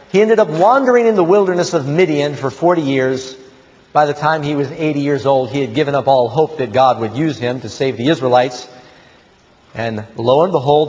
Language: English